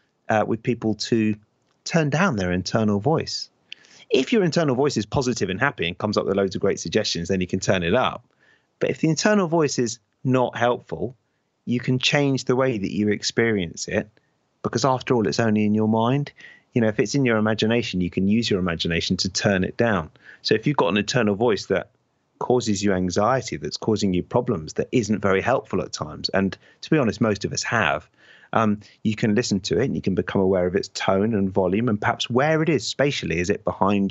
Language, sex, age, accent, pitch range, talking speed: English, male, 30-49, British, 100-125 Hz, 220 wpm